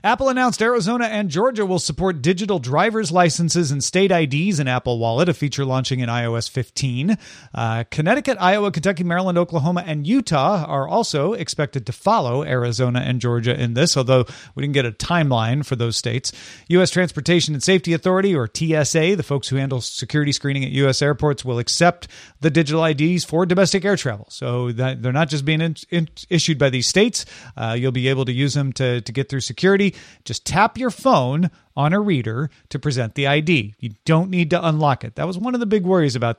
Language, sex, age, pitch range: English, male, 40-59, 130-175 Hz